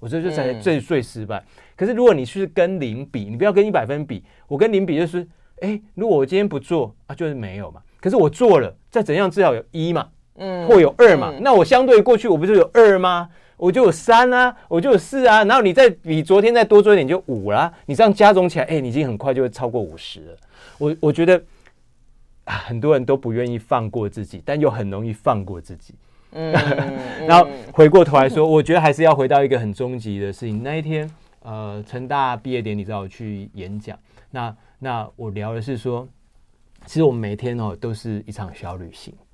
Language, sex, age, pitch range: Chinese, male, 30-49, 105-165 Hz